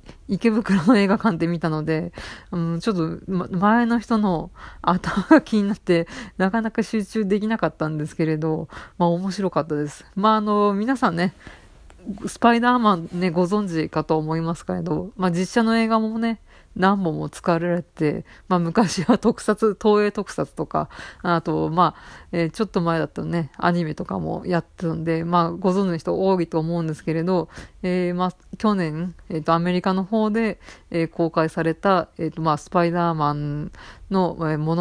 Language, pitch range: Japanese, 165-210 Hz